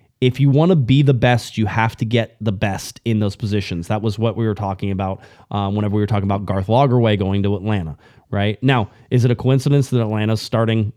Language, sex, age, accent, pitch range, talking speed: English, male, 20-39, American, 105-130 Hz, 235 wpm